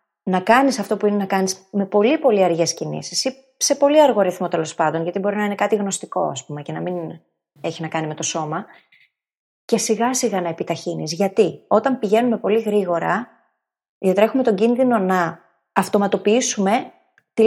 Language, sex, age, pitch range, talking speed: Greek, female, 30-49, 175-235 Hz, 180 wpm